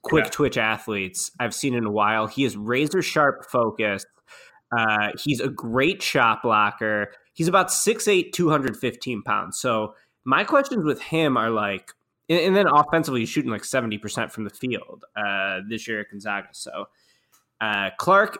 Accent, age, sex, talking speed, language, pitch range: American, 20-39, male, 155 wpm, English, 110-145 Hz